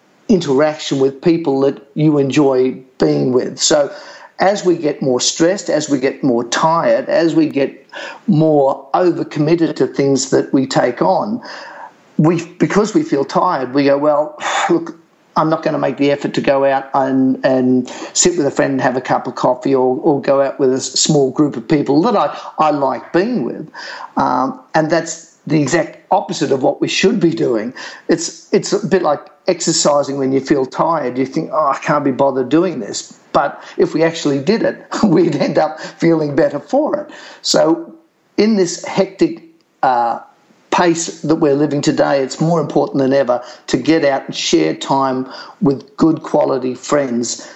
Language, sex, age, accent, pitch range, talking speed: English, male, 50-69, Australian, 135-175 Hz, 185 wpm